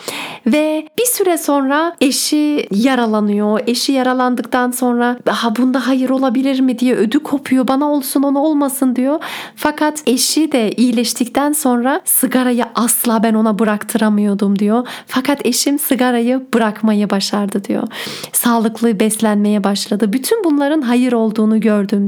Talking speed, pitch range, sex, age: 130 wpm, 220-270 Hz, female, 40-59